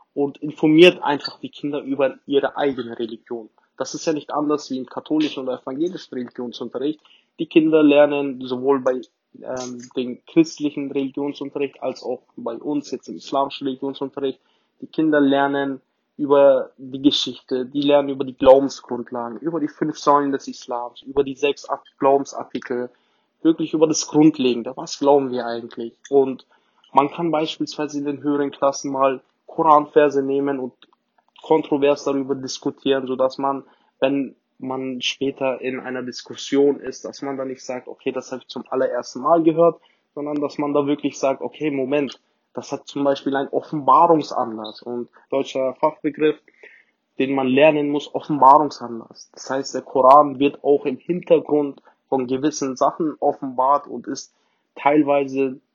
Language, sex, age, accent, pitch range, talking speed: German, male, 20-39, German, 130-150 Hz, 150 wpm